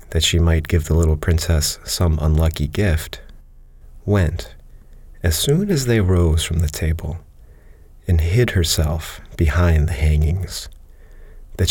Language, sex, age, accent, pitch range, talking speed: English, male, 40-59, American, 80-90 Hz, 135 wpm